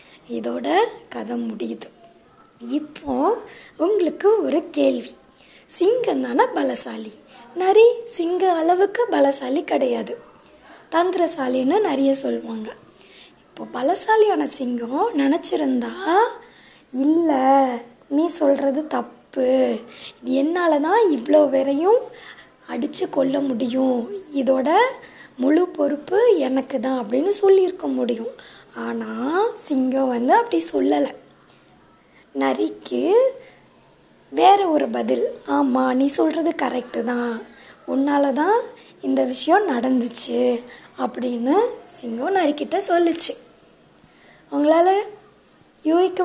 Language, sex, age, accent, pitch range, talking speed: Tamil, female, 20-39, native, 260-370 Hz, 85 wpm